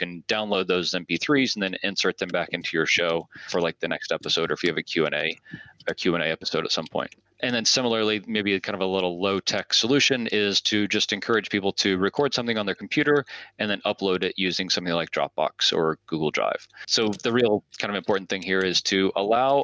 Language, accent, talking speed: English, American, 225 wpm